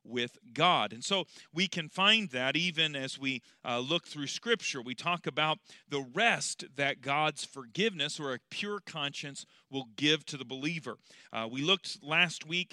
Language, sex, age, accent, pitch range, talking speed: English, male, 40-59, American, 140-185 Hz, 175 wpm